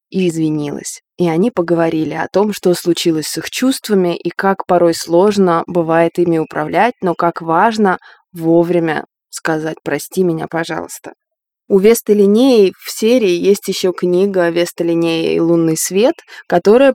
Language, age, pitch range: Russian, 20-39, 170-200 Hz